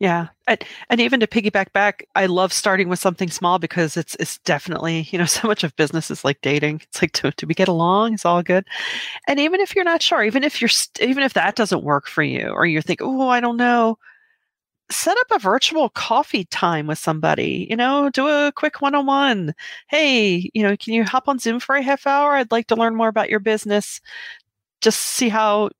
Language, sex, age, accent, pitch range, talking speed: English, female, 40-59, American, 175-250 Hz, 225 wpm